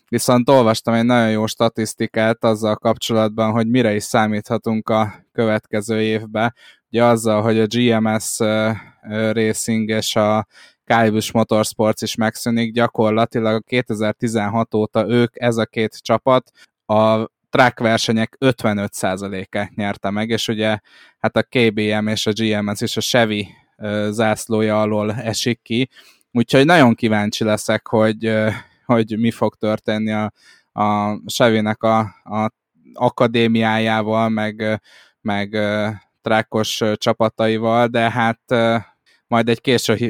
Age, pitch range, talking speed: 20-39, 110-115 Hz, 125 wpm